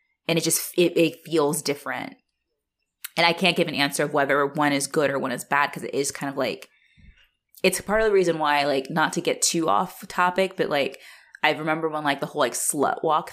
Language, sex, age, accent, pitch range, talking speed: English, female, 20-39, American, 140-180 Hz, 245 wpm